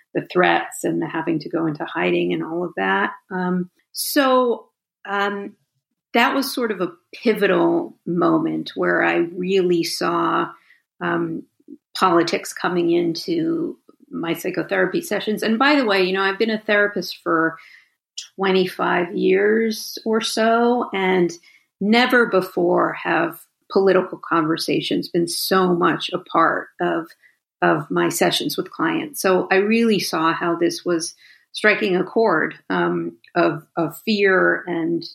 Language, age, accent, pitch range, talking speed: English, 50-69, American, 170-215 Hz, 140 wpm